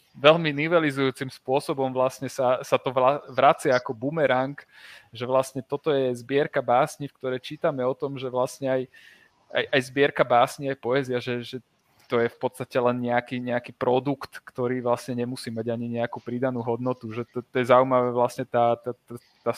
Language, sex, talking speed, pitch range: Slovak, male, 170 wpm, 125-145 Hz